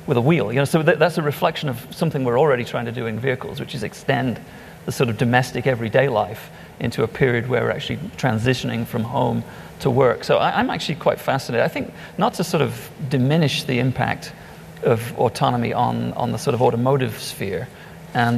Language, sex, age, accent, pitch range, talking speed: English, male, 40-59, British, 120-145 Hz, 195 wpm